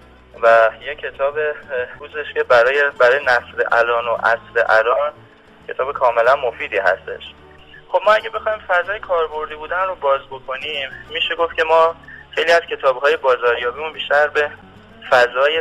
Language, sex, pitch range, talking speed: Persian, male, 115-160 Hz, 140 wpm